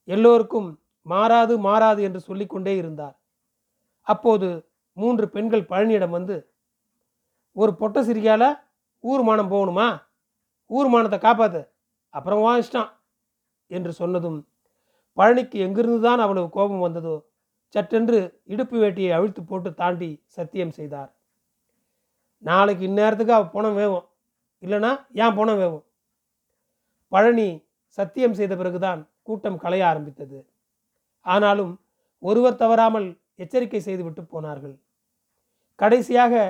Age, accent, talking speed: 40-59, native, 100 wpm